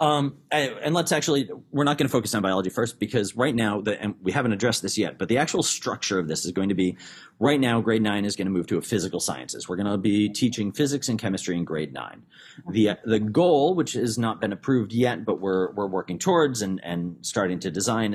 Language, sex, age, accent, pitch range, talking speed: English, male, 40-59, American, 95-120 Hz, 240 wpm